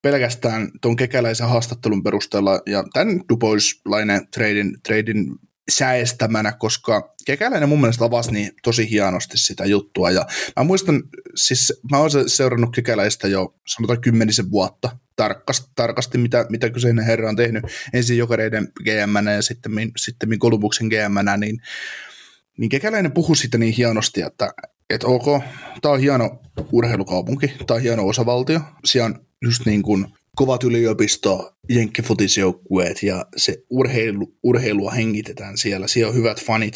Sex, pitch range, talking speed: male, 105-125 Hz, 130 wpm